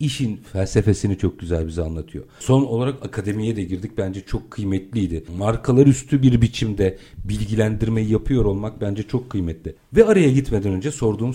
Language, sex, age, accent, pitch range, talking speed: Turkish, male, 50-69, native, 100-140 Hz, 155 wpm